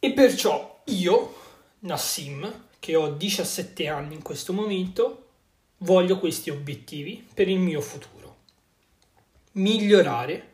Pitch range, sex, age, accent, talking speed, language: 145-190 Hz, male, 20-39, native, 110 wpm, Italian